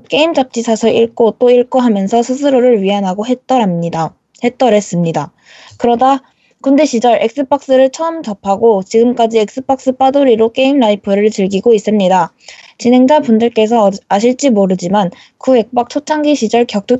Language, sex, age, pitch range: Korean, female, 20-39, 205-260 Hz